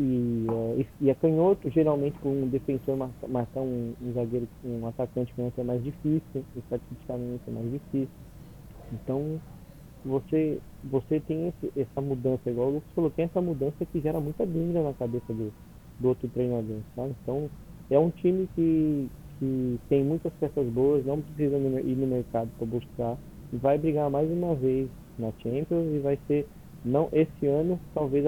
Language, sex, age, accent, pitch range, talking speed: Portuguese, male, 20-39, Brazilian, 125-150 Hz, 170 wpm